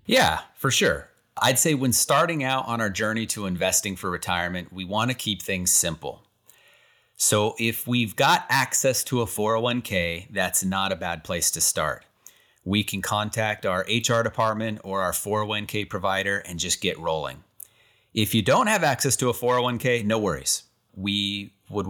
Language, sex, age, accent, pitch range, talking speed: English, male, 30-49, American, 100-125 Hz, 170 wpm